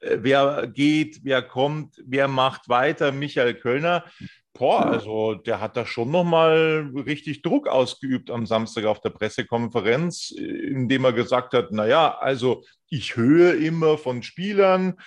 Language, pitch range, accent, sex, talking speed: German, 125-155 Hz, German, male, 145 wpm